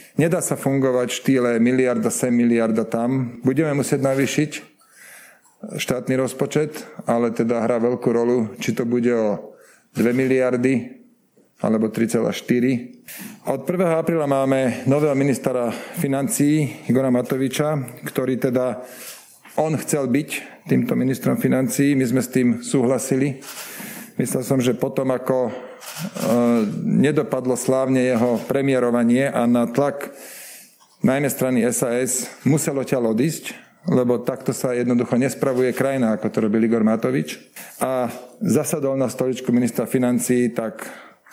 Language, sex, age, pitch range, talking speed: Slovak, male, 40-59, 120-140 Hz, 120 wpm